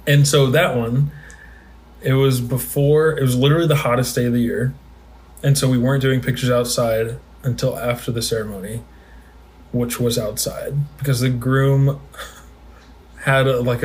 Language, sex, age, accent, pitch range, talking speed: English, male, 20-39, American, 115-140 Hz, 150 wpm